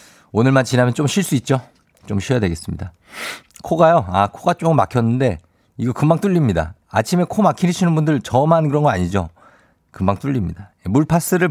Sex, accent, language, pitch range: male, native, Korean, 100-155 Hz